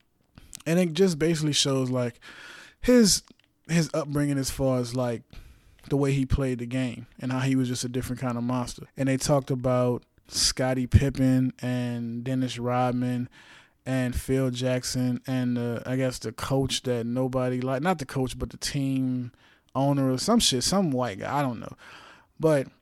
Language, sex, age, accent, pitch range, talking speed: English, male, 20-39, American, 125-145 Hz, 175 wpm